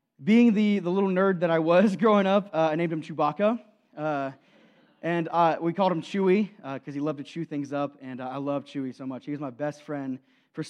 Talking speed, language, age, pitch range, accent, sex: 240 wpm, English, 20-39, 145-190 Hz, American, male